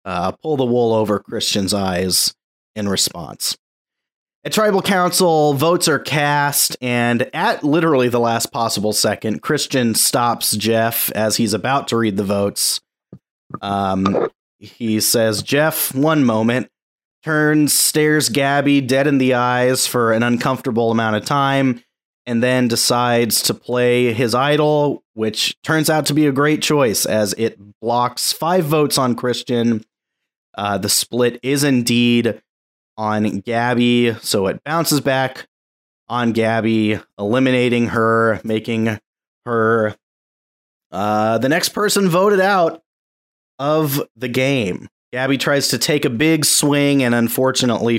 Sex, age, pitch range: male, 30-49, 110-140 Hz